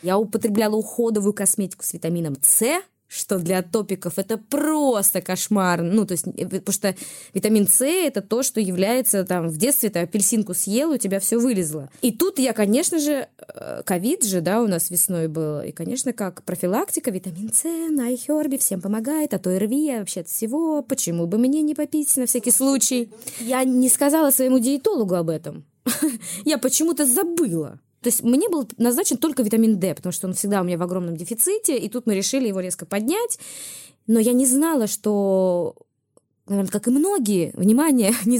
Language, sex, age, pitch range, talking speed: Russian, female, 20-39, 185-265 Hz, 180 wpm